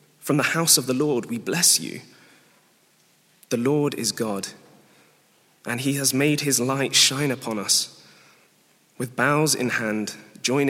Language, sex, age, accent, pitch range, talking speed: English, male, 20-39, British, 120-150 Hz, 150 wpm